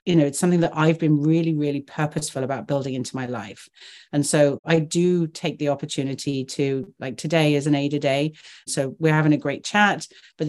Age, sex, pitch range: 40-59, female, 140-160 Hz